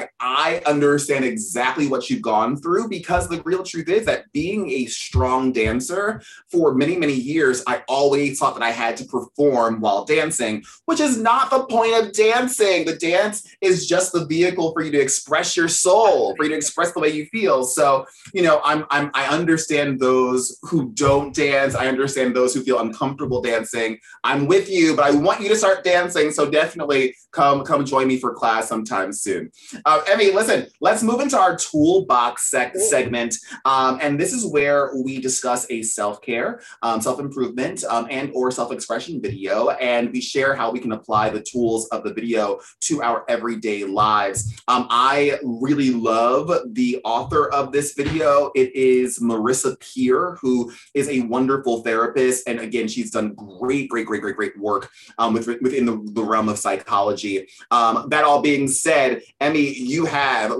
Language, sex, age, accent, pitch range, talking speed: English, male, 30-49, American, 120-160 Hz, 180 wpm